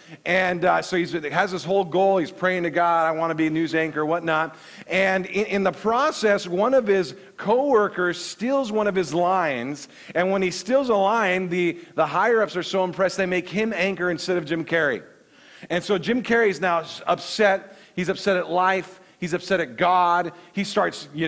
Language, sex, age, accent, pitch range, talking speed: English, male, 40-59, American, 165-195 Hz, 205 wpm